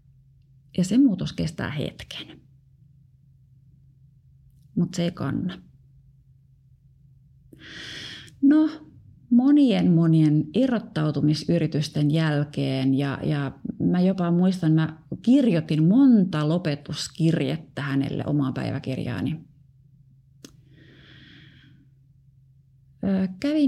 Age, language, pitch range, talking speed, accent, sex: 30-49, Finnish, 140-220 Hz, 70 wpm, native, female